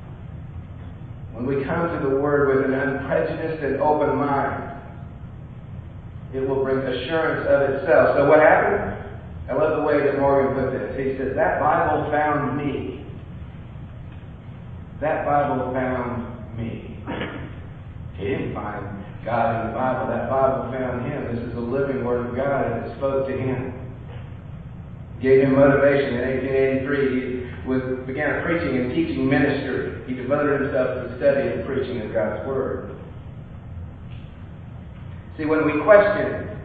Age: 40-59